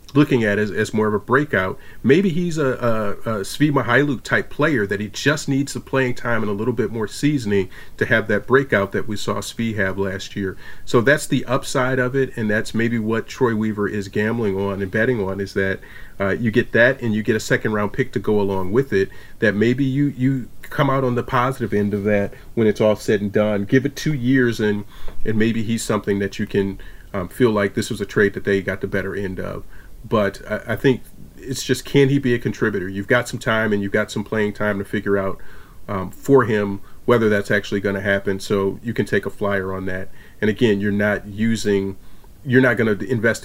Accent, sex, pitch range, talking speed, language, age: American, male, 100-125 Hz, 235 wpm, English, 40-59